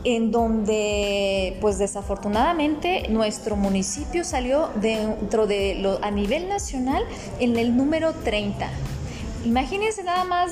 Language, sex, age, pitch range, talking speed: Spanish, female, 20-39, 215-285 Hz, 115 wpm